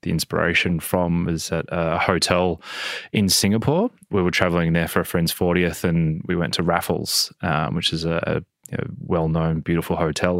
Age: 20-39